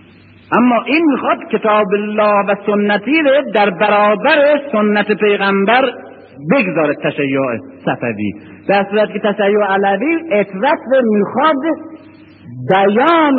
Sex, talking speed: male, 100 wpm